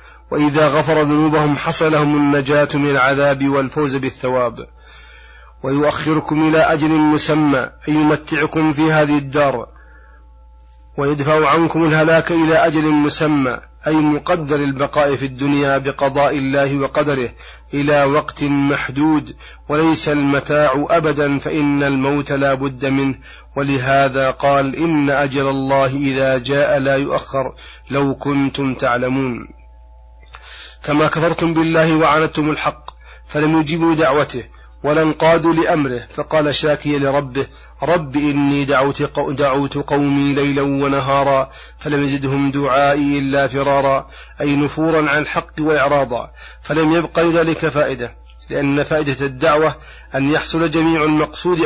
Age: 30-49